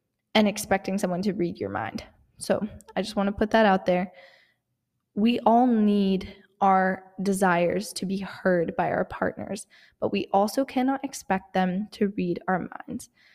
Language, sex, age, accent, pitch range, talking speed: English, female, 10-29, American, 185-245 Hz, 165 wpm